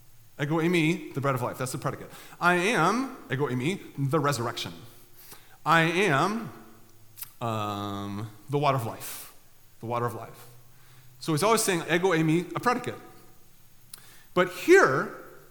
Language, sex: English, male